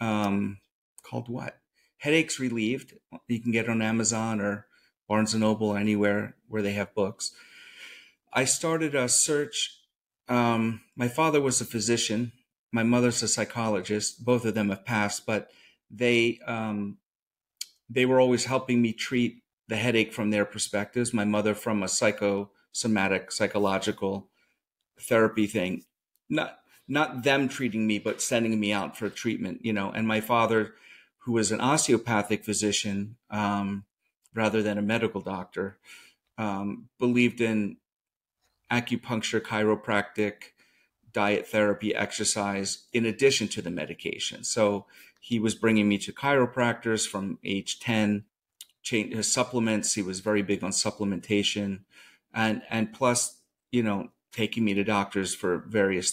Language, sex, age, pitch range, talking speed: English, male, 40-59, 105-120 Hz, 140 wpm